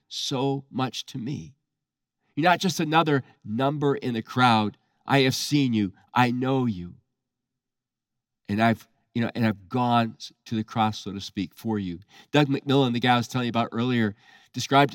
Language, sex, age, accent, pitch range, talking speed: English, male, 40-59, American, 125-195 Hz, 180 wpm